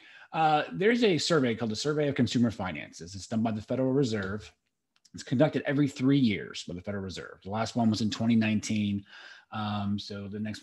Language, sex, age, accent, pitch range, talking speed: English, male, 30-49, American, 110-140 Hz, 200 wpm